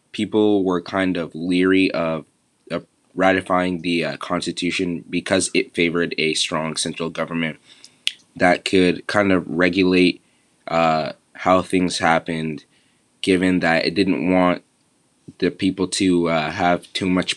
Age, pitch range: 20-39, 85-95 Hz